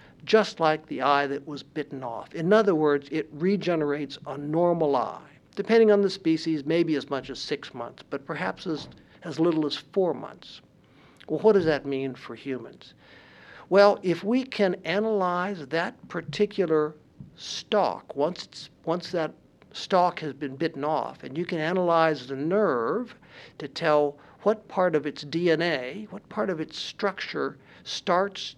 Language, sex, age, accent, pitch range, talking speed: English, male, 60-79, American, 150-195 Hz, 160 wpm